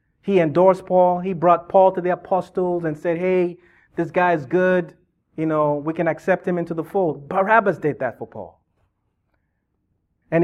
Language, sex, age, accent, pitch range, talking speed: English, male, 30-49, American, 145-185 Hz, 180 wpm